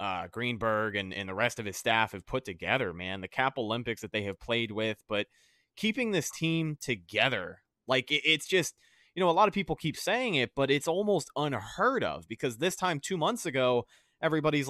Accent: American